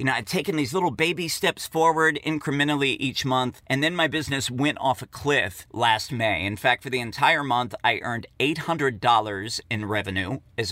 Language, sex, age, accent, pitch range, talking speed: English, male, 40-59, American, 120-155 Hz, 190 wpm